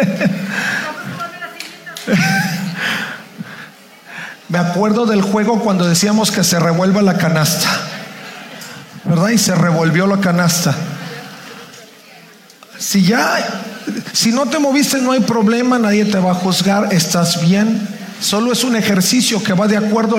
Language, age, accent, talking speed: Spanish, 50-69, Mexican, 120 wpm